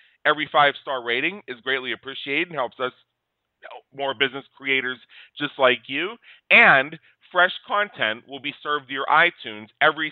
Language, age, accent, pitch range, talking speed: English, 40-59, American, 125-150 Hz, 150 wpm